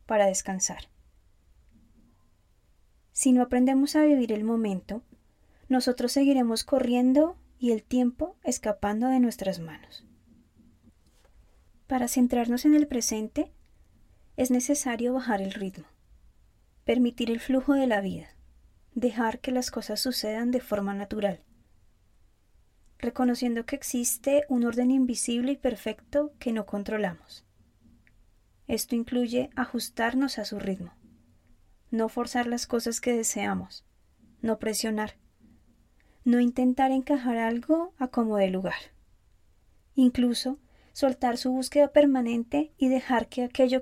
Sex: female